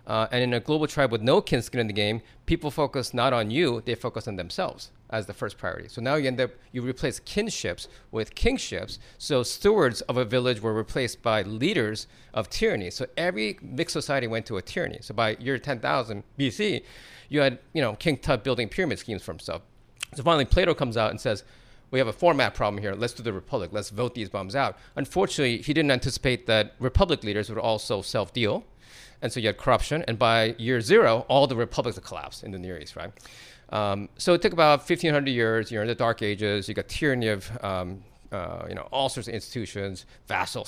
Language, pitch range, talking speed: English, 110-140 Hz, 215 wpm